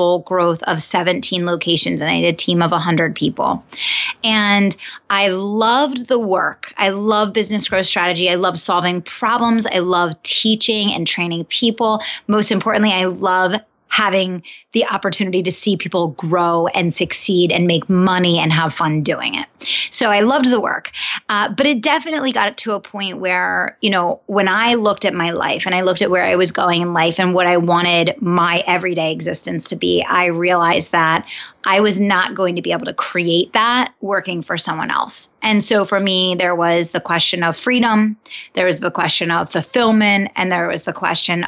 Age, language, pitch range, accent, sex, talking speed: 20-39, English, 175-210 Hz, American, female, 190 wpm